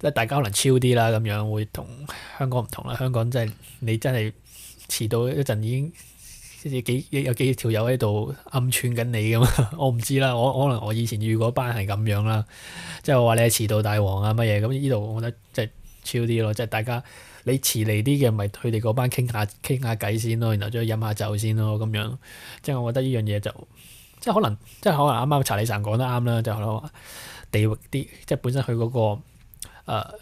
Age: 20-39